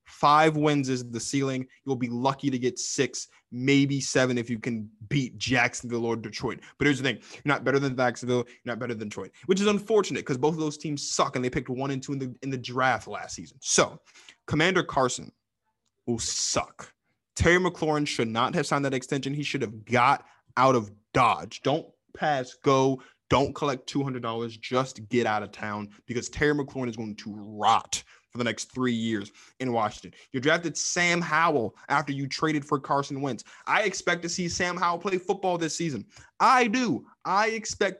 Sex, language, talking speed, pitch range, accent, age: male, English, 195 wpm, 120-160 Hz, American, 20-39